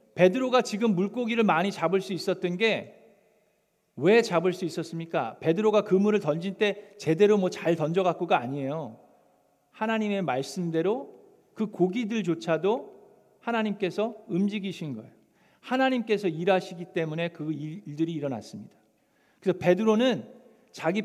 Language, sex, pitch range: Korean, male, 160-205 Hz